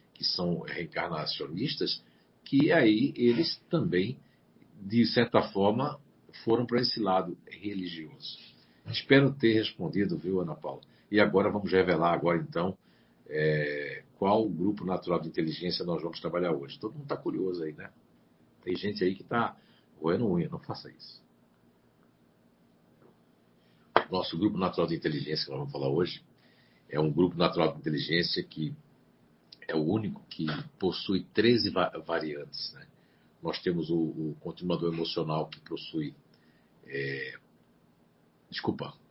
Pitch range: 80-105 Hz